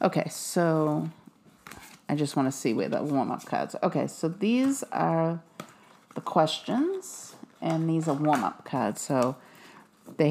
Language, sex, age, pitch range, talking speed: English, female, 40-59, 160-210 Hz, 140 wpm